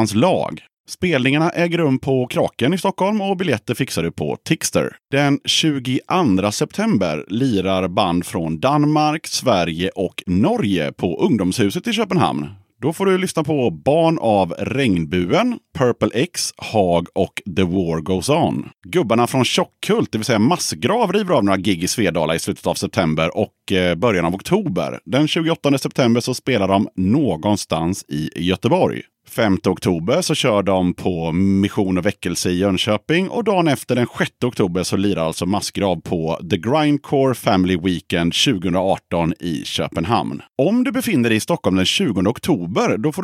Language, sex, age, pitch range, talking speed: Swedish, male, 30-49, 95-150 Hz, 160 wpm